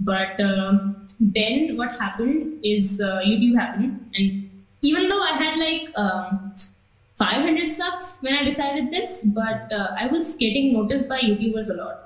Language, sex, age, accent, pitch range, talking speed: Hindi, female, 20-39, native, 195-260 Hz, 170 wpm